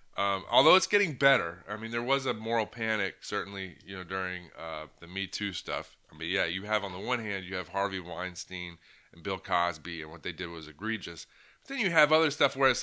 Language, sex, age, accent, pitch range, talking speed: English, male, 30-49, American, 95-120 Hz, 240 wpm